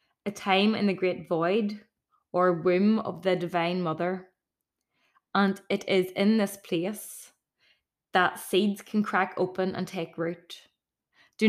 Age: 20-39